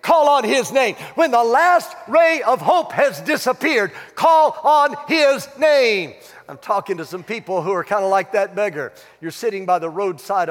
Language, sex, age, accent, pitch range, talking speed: English, male, 60-79, American, 175-240 Hz, 190 wpm